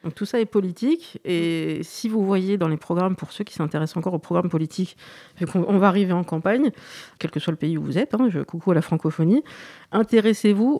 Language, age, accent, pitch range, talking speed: French, 40-59, French, 165-205 Hz, 220 wpm